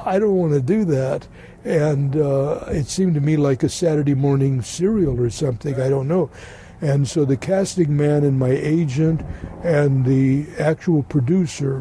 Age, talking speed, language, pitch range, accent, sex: 60-79, 175 wpm, English, 135-160 Hz, American, male